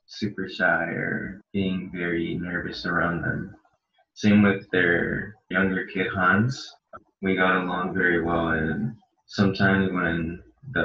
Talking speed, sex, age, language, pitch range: 125 wpm, male, 20-39, English, 90-100 Hz